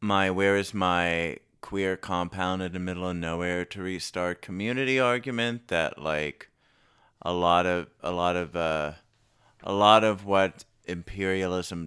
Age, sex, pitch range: 30-49, male, 85-100 Hz